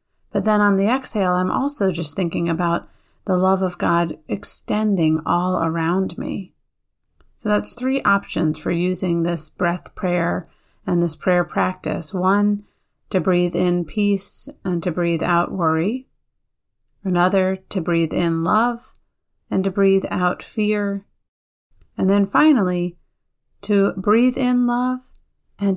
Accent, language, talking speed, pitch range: American, English, 135 wpm, 170-205 Hz